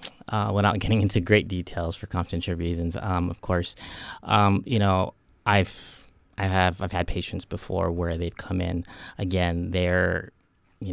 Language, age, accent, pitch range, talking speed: English, 20-39, American, 90-105 Hz, 160 wpm